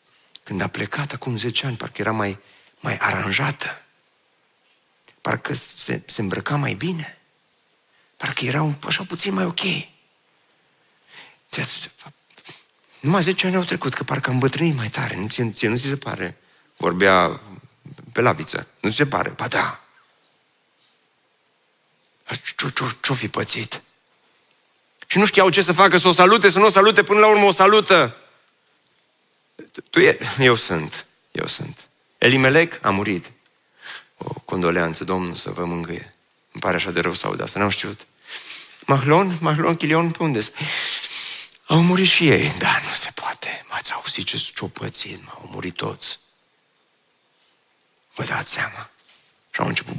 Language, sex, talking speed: Romanian, male, 145 wpm